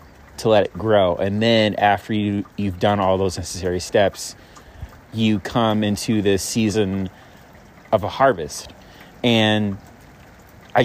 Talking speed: 135 wpm